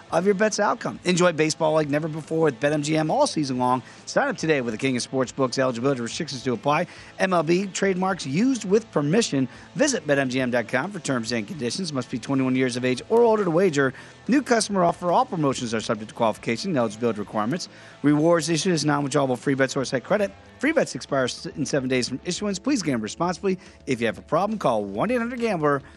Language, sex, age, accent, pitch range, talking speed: English, male, 40-59, American, 125-195 Hz, 200 wpm